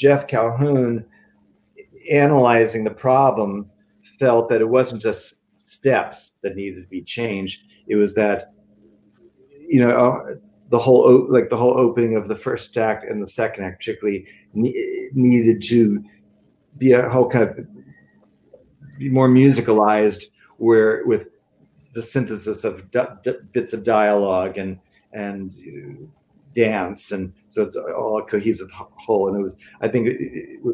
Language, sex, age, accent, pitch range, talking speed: English, male, 50-69, American, 105-130 Hz, 140 wpm